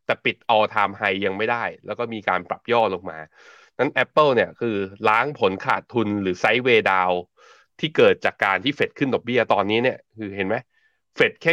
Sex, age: male, 20-39